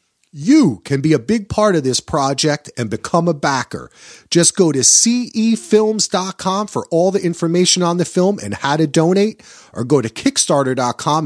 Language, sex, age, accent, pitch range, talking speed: English, male, 40-59, American, 145-215 Hz, 170 wpm